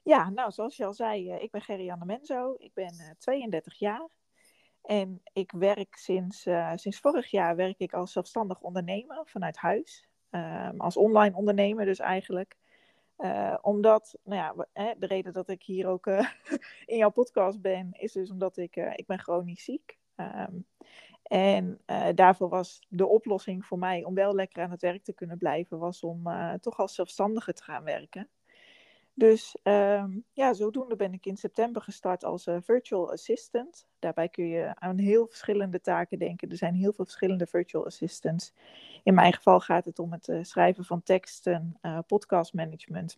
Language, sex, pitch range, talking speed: Dutch, female, 180-215 Hz, 160 wpm